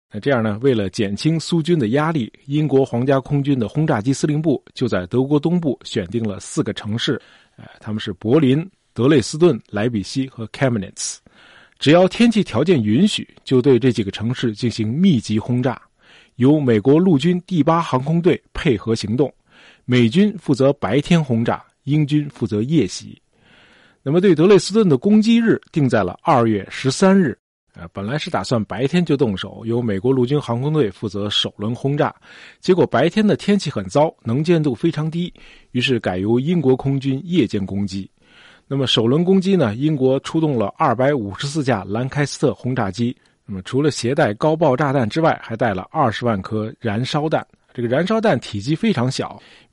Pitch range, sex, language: 115-155 Hz, male, Chinese